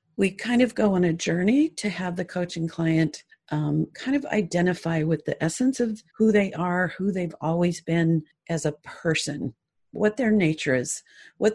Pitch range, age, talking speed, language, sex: 160-220 Hz, 50-69, 180 wpm, English, female